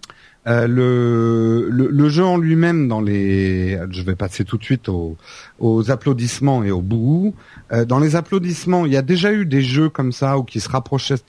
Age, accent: 40-59, French